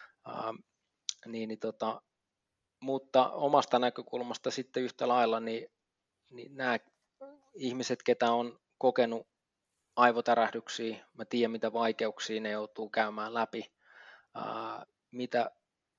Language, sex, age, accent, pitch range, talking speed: Finnish, male, 20-39, native, 110-120 Hz, 105 wpm